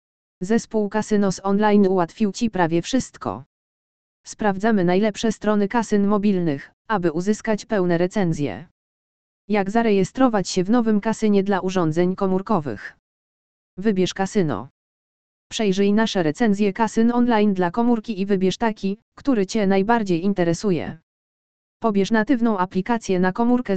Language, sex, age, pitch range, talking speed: Polish, female, 20-39, 180-215 Hz, 115 wpm